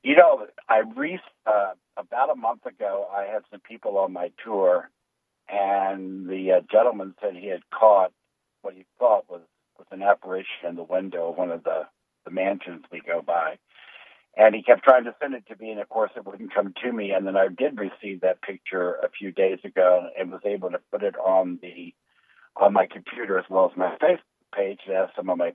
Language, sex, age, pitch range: English, male, 60-79, 95-130 Hz